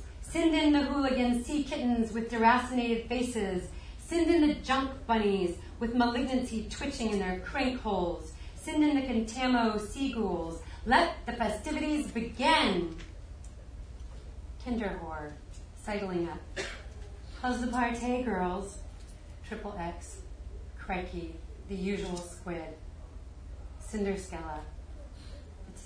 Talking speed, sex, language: 110 wpm, female, English